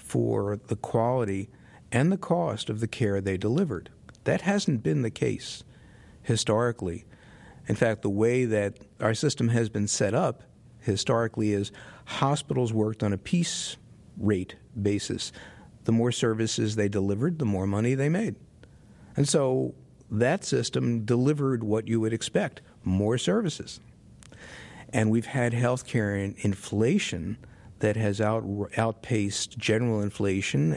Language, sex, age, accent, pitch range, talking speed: English, male, 50-69, American, 100-125 Hz, 135 wpm